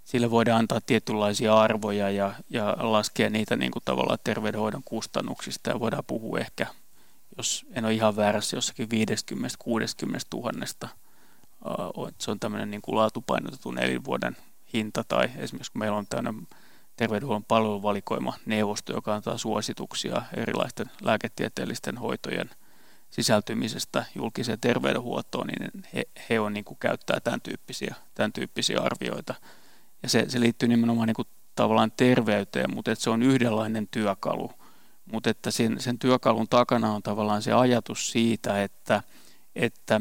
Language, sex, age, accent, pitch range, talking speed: Finnish, male, 30-49, native, 105-115 Hz, 130 wpm